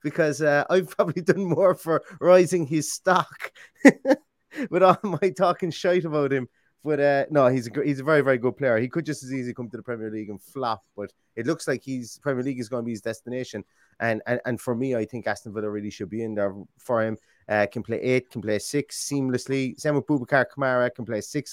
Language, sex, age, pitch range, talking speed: English, male, 30-49, 105-140 Hz, 235 wpm